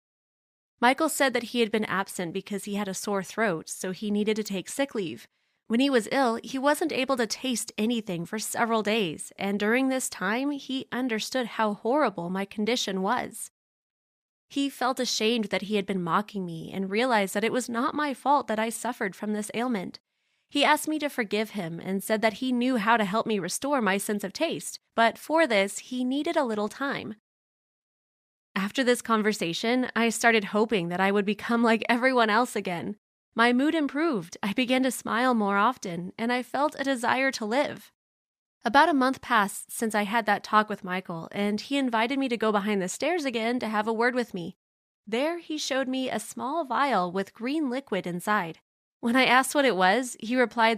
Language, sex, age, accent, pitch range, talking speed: English, female, 20-39, American, 205-255 Hz, 200 wpm